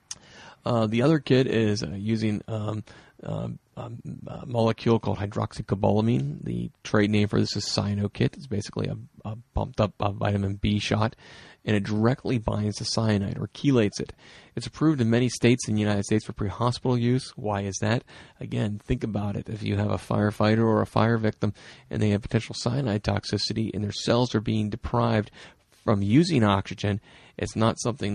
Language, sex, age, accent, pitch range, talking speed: English, male, 30-49, American, 100-115 Hz, 180 wpm